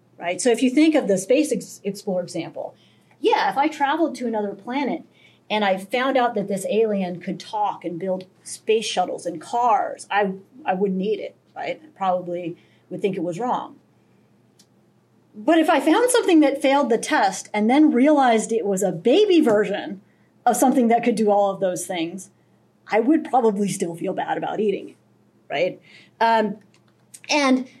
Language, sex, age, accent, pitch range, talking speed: English, female, 30-49, American, 195-280 Hz, 175 wpm